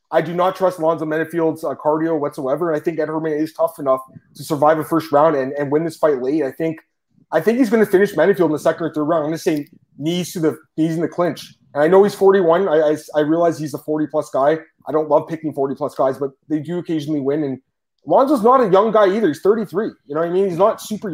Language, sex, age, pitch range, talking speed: English, male, 30-49, 155-185 Hz, 275 wpm